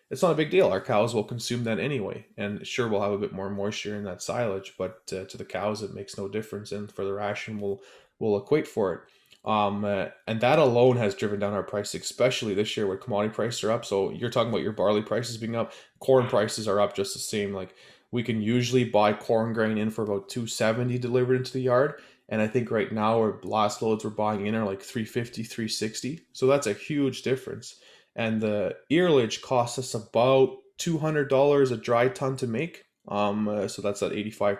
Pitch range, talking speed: 100-120 Hz, 225 wpm